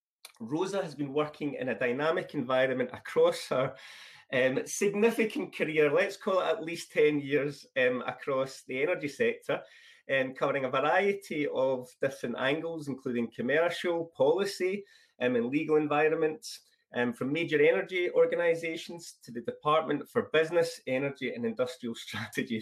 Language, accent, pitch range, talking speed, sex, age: English, British, 135-215 Hz, 145 wpm, male, 30-49